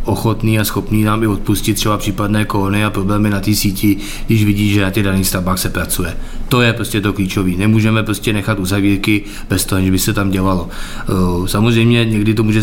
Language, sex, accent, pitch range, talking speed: Czech, male, native, 95-110 Hz, 205 wpm